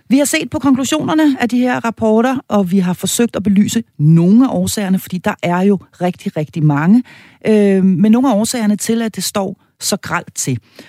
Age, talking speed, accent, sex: 40-59, 205 wpm, native, female